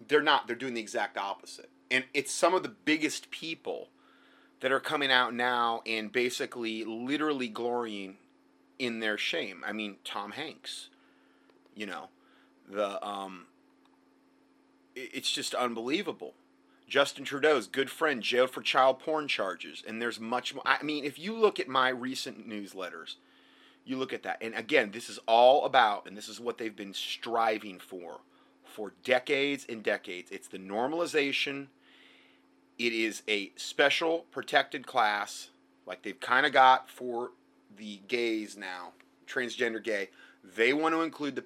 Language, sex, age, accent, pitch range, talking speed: English, male, 30-49, American, 110-145 Hz, 155 wpm